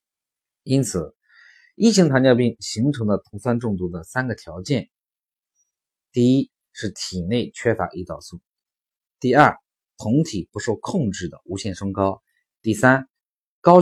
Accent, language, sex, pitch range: native, Chinese, male, 95-135 Hz